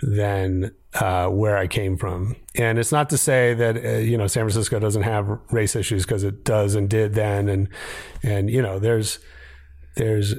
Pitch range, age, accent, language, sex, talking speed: 105-130 Hz, 30-49, American, English, male, 190 wpm